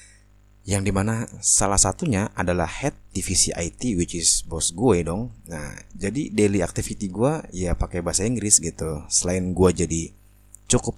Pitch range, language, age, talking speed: 90-105 Hz, Indonesian, 20-39, 150 wpm